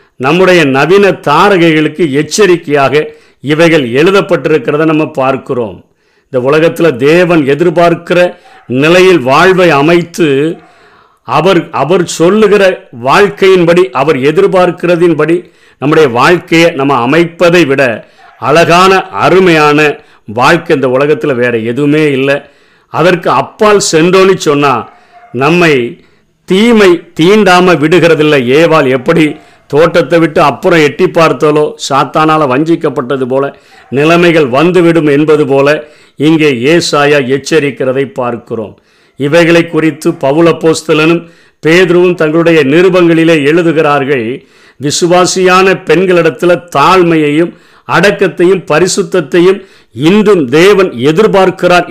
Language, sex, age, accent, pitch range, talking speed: Tamil, male, 50-69, native, 145-175 Hz, 90 wpm